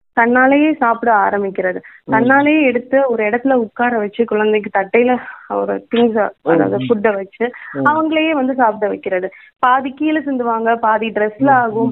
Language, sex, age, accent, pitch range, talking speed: Tamil, female, 20-39, native, 225-270 Hz, 130 wpm